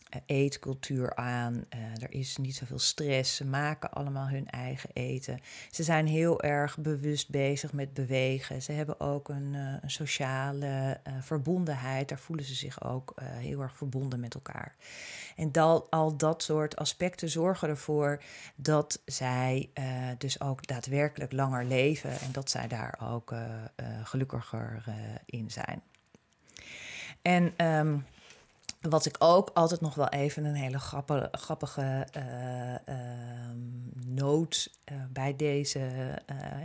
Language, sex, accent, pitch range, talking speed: Dutch, female, Dutch, 130-150 Hz, 140 wpm